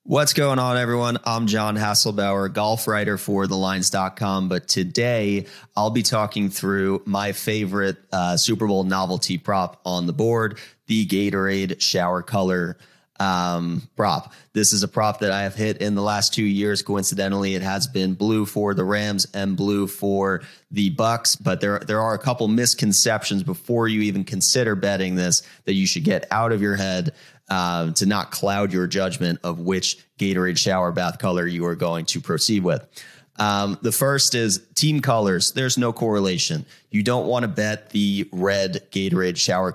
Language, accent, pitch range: English, American, 95-110 Hz